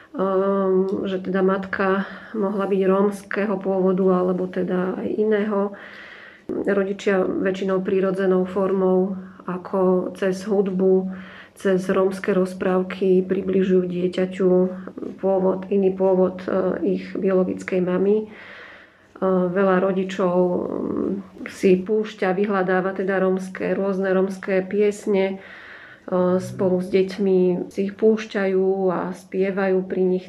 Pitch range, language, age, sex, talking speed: 185-195 Hz, Slovak, 30-49, female, 95 wpm